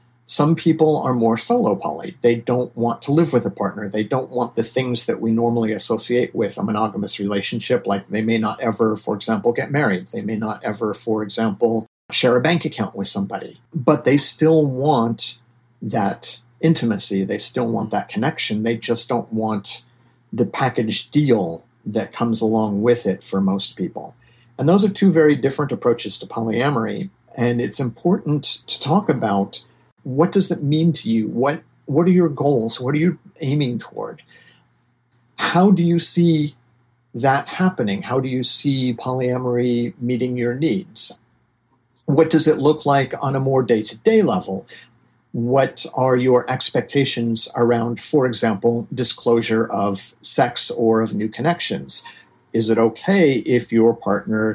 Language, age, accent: English, 50-69, American